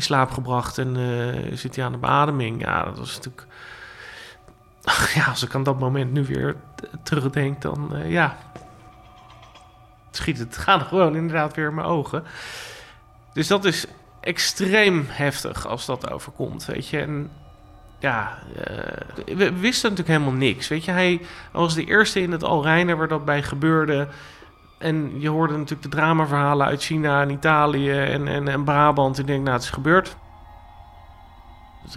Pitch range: 135-165 Hz